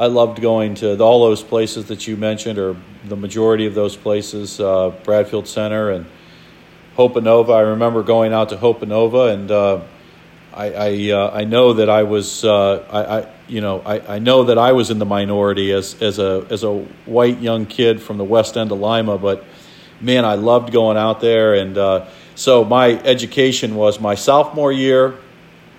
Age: 50-69